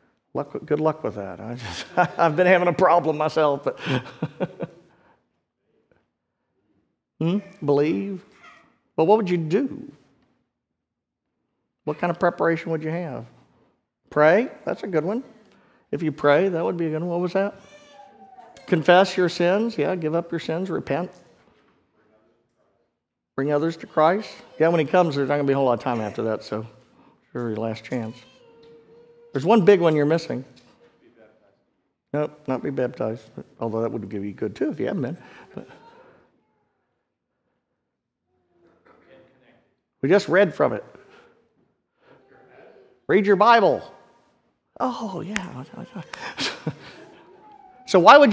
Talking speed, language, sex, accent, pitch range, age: 140 wpm, English, male, American, 135-195 Hz, 50-69